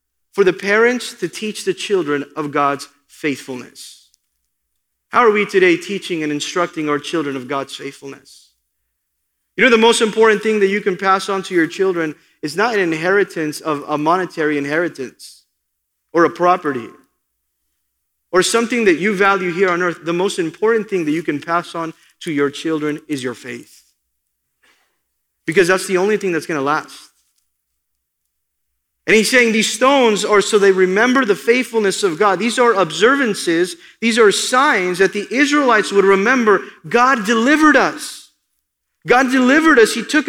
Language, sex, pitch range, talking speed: English, male, 155-235 Hz, 165 wpm